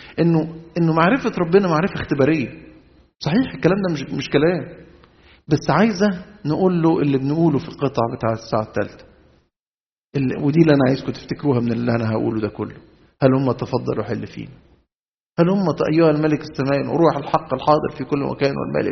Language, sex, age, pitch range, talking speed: Arabic, male, 50-69, 130-175 Hz, 160 wpm